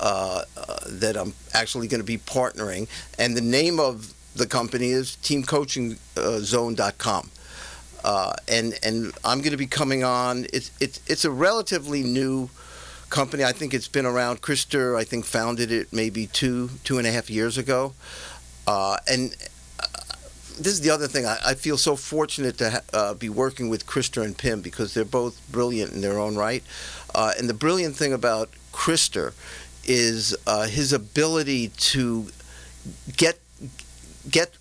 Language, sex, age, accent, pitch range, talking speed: English, male, 50-69, American, 110-140 Hz, 165 wpm